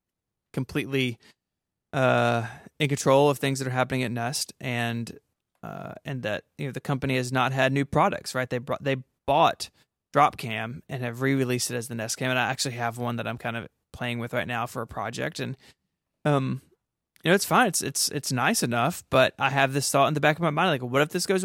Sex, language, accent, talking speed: male, English, American, 225 wpm